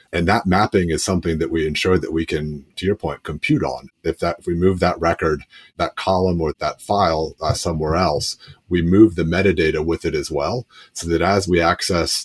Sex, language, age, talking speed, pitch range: male, English, 30-49, 210 wpm, 80-100 Hz